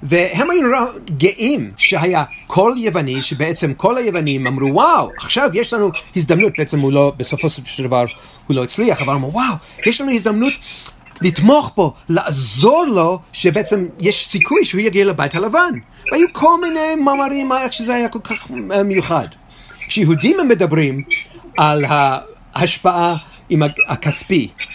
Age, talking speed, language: 30-49, 140 wpm, Hebrew